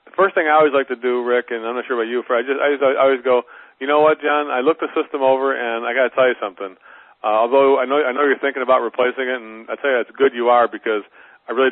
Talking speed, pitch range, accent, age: 305 wpm, 115-140 Hz, American, 40-59